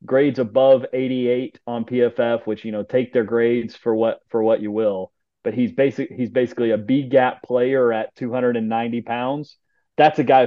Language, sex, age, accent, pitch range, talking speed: English, male, 30-49, American, 105-125 Hz, 185 wpm